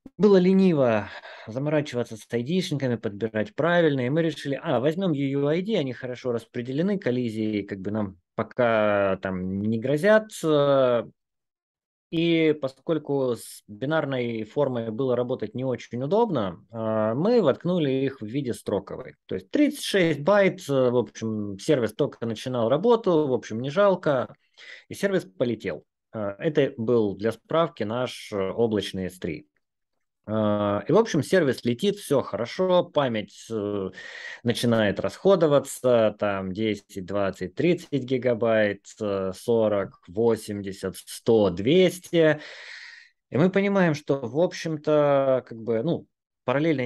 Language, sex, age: Russian, male, 20-39